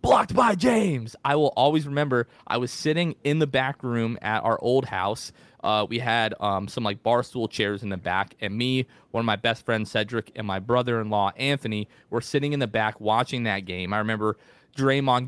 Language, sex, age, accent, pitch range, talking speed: English, male, 20-39, American, 105-130 Hz, 215 wpm